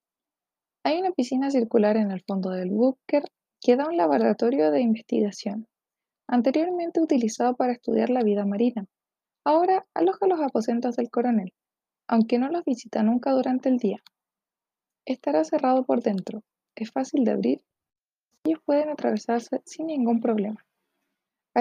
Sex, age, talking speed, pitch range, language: female, 20-39, 140 wpm, 220-280 Hz, Spanish